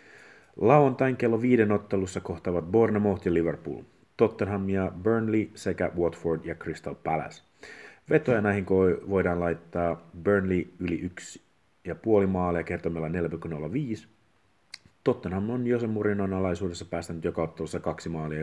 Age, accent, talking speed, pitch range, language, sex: 30-49, native, 120 wpm, 85-100 Hz, Finnish, male